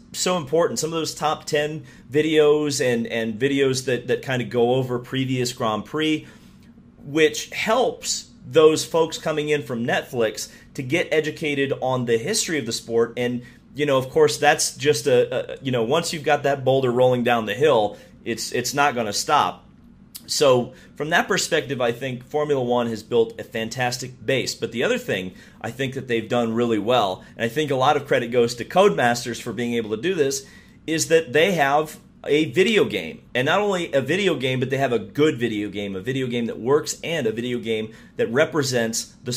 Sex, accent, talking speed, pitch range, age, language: male, American, 205 wpm, 120-150 Hz, 30-49, English